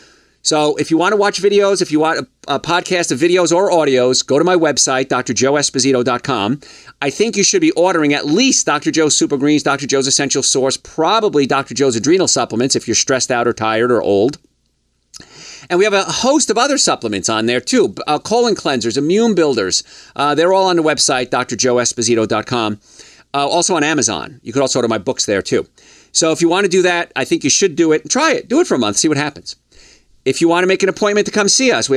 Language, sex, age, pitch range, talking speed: English, male, 40-59, 130-185 Hz, 225 wpm